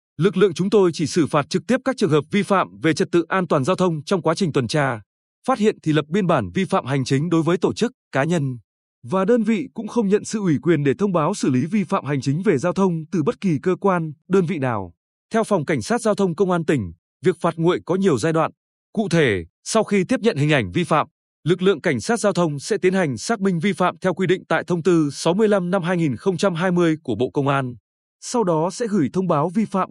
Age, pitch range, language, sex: 20-39, 150-200 Hz, Vietnamese, male